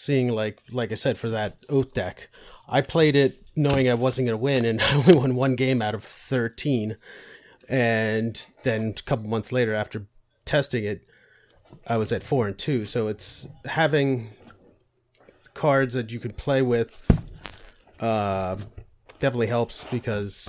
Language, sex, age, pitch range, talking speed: English, male, 30-49, 110-130 Hz, 160 wpm